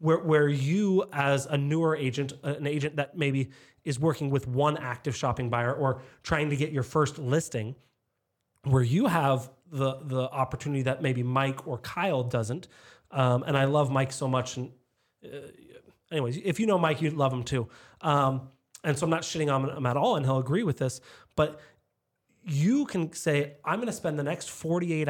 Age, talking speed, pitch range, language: 30-49, 195 wpm, 130-170 Hz, English